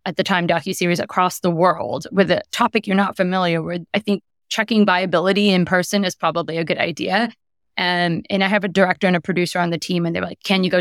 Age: 20-39